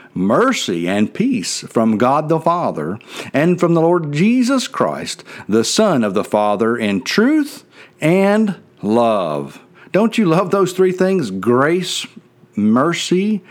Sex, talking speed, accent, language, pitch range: male, 135 wpm, American, English, 115-195 Hz